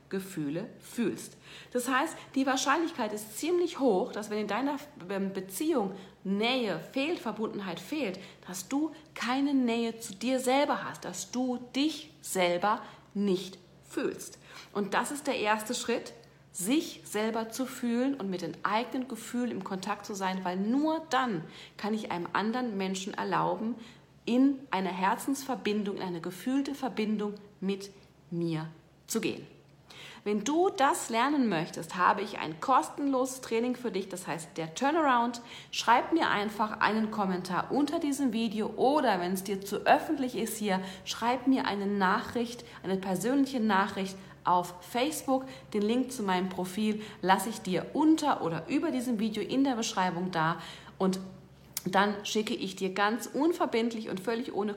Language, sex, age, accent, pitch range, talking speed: German, female, 40-59, German, 185-255 Hz, 150 wpm